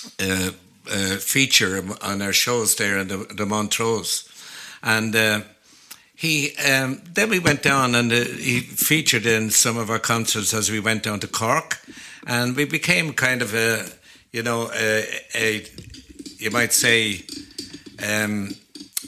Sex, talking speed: male, 150 wpm